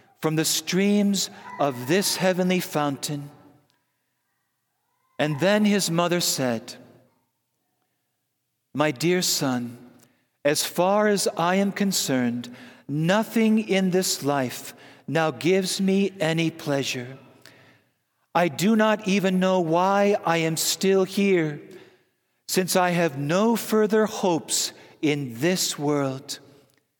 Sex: male